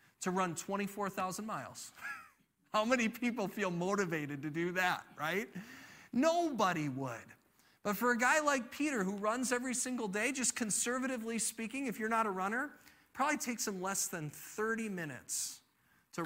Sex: male